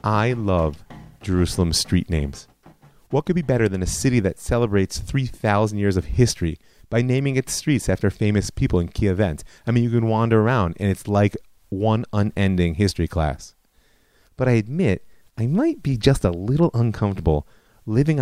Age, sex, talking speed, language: 30-49, male, 170 wpm, English